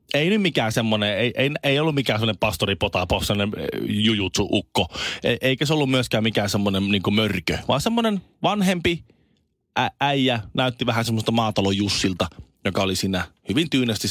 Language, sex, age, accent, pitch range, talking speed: Finnish, male, 30-49, native, 100-140 Hz, 155 wpm